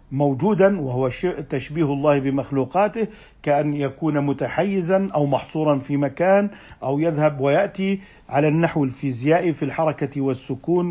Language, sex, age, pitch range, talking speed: Arabic, male, 50-69, 140-165 Hz, 120 wpm